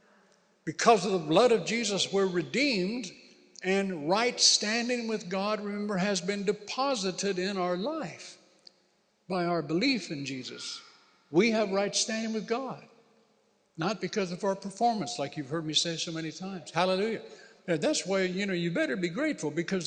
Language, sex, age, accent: English, male, 60-79, American